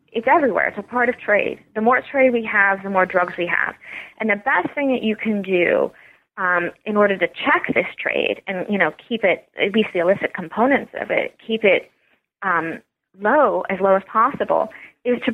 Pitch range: 185-230 Hz